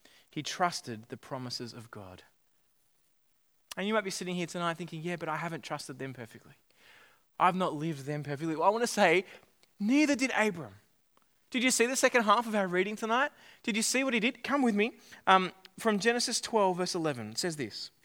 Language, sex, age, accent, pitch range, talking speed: English, male, 20-39, Australian, 165-225 Hz, 205 wpm